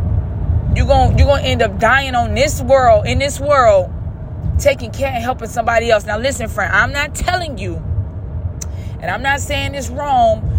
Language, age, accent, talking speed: English, 20-39, American, 185 wpm